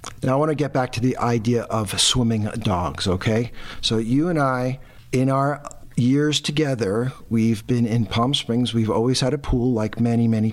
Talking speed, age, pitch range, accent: 195 wpm, 50-69, 115-140 Hz, American